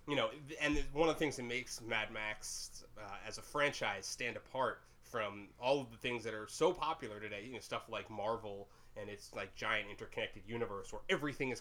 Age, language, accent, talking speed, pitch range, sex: 20-39, English, American, 210 wpm, 110-135 Hz, male